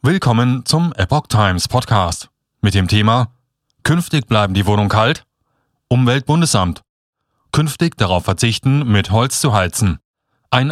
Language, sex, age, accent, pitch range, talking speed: German, male, 30-49, German, 105-140 Hz, 125 wpm